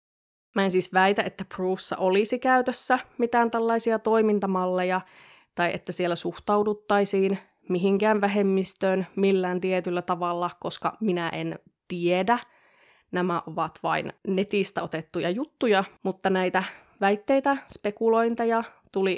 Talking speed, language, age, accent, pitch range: 110 wpm, Finnish, 20-39, native, 175-205 Hz